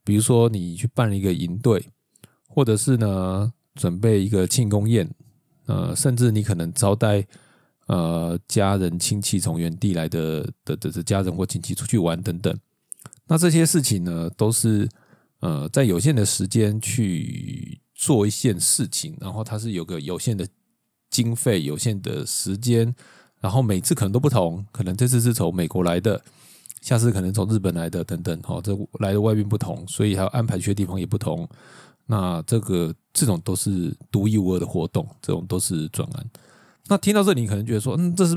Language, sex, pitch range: Chinese, male, 95-125 Hz